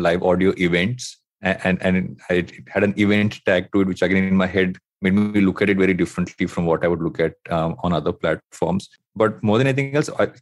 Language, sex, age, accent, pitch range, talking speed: English, male, 30-49, Indian, 95-115 Hz, 235 wpm